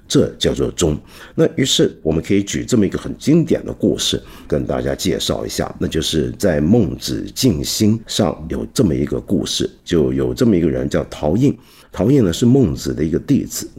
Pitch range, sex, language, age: 90-130 Hz, male, Chinese, 50-69